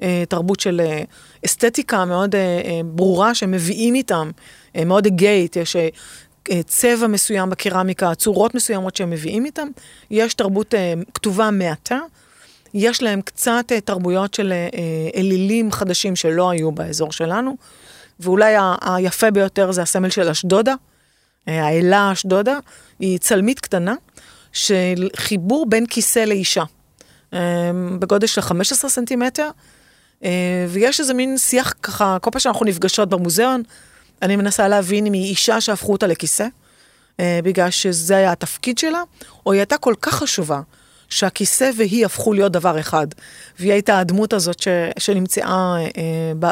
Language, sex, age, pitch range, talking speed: Hebrew, female, 30-49, 180-225 Hz, 130 wpm